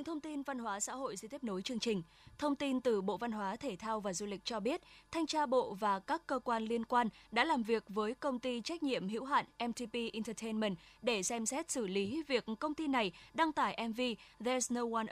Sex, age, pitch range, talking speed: female, 10-29, 215-260 Hz, 240 wpm